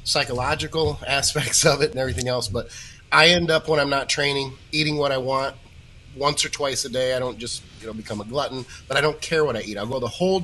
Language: English